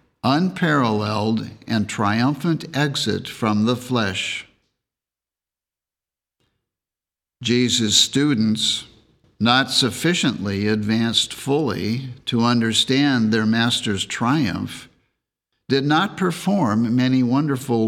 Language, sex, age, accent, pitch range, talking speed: English, male, 60-79, American, 110-135 Hz, 75 wpm